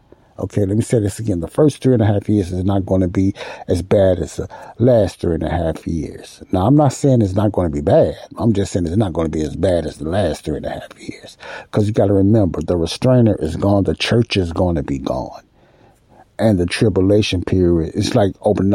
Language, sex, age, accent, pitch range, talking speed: English, male, 60-79, American, 90-110 Hz, 255 wpm